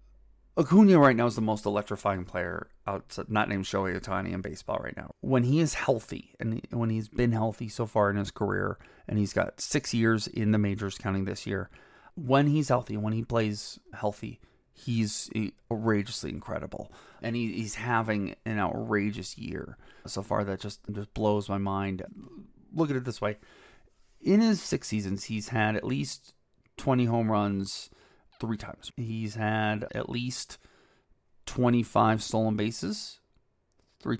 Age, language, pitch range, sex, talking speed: 30-49, English, 100-120 Hz, male, 165 wpm